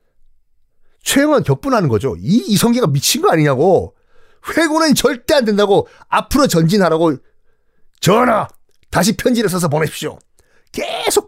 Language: Korean